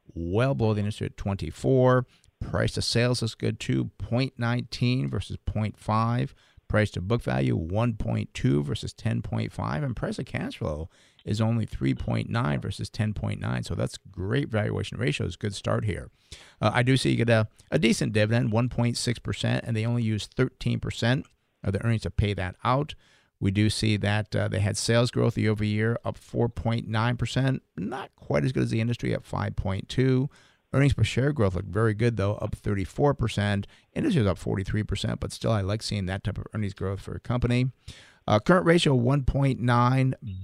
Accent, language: American, English